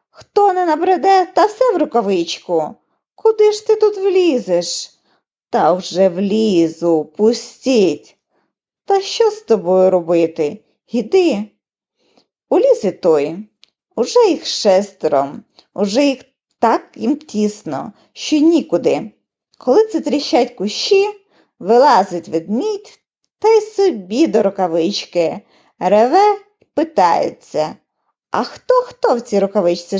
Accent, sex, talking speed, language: native, female, 105 wpm, Ukrainian